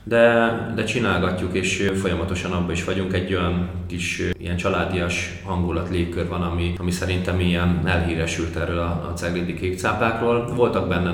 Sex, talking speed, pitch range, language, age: male, 150 wpm, 85-95 Hz, Hungarian, 20-39